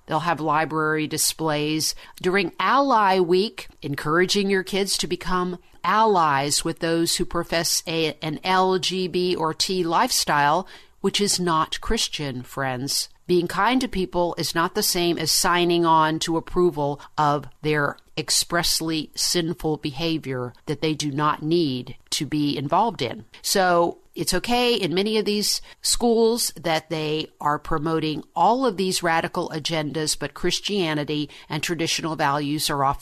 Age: 50-69